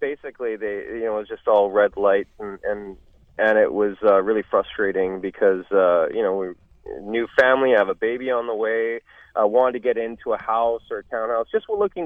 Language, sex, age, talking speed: English, male, 30-49, 230 wpm